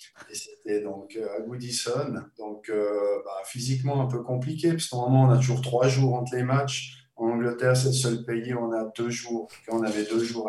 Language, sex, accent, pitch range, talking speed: French, male, French, 115-140 Hz, 215 wpm